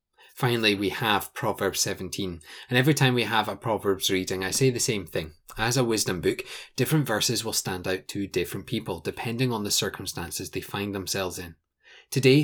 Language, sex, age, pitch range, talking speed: English, male, 20-39, 105-130 Hz, 190 wpm